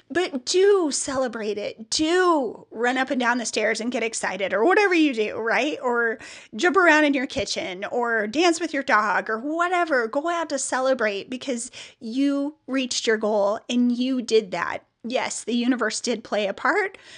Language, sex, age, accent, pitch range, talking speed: English, female, 30-49, American, 225-280 Hz, 180 wpm